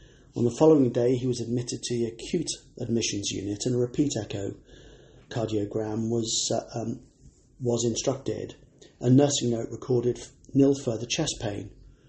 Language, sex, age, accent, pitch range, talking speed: English, male, 40-59, British, 115-135 Hz, 140 wpm